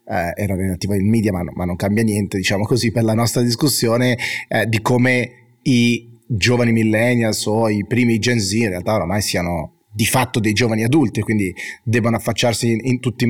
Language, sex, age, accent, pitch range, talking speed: Italian, male, 30-49, native, 110-125 Hz, 180 wpm